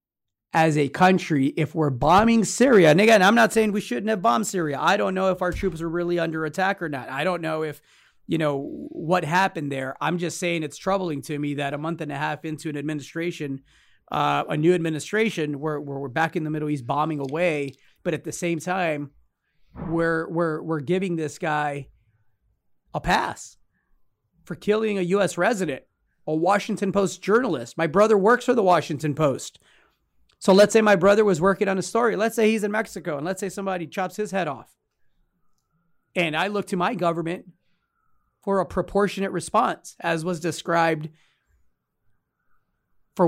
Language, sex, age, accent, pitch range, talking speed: English, male, 30-49, American, 155-200 Hz, 185 wpm